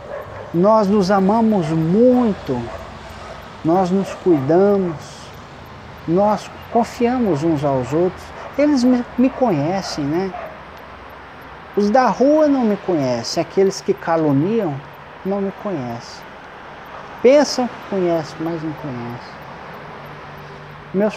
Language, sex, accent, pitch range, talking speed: Portuguese, male, Brazilian, 160-205 Hz, 100 wpm